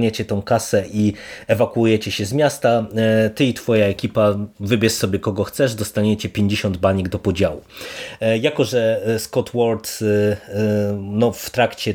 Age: 30-49